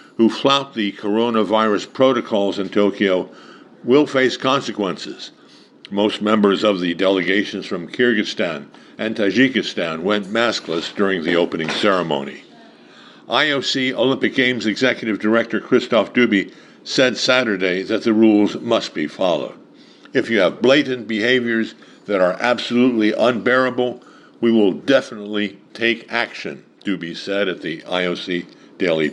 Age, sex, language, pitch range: 60-79, male, English, 100-125 Hz